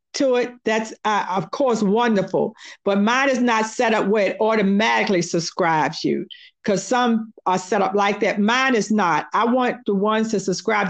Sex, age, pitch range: female, 50-69, 190-245 Hz